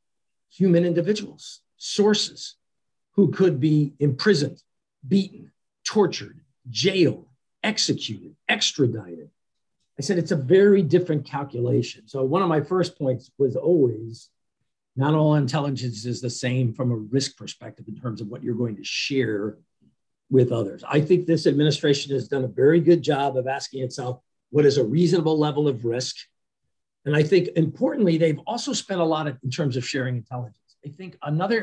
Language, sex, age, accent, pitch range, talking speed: English, male, 50-69, American, 125-160 Hz, 160 wpm